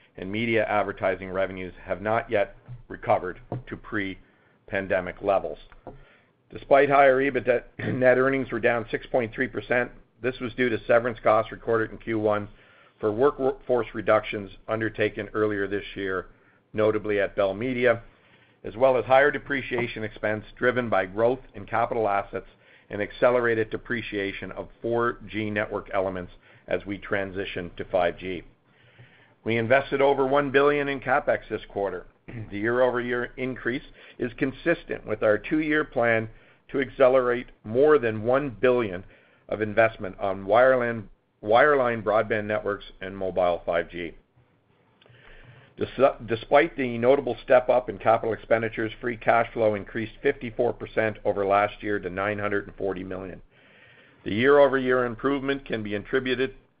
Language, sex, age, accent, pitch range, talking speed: English, male, 50-69, American, 100-125 Hz, 130 wpm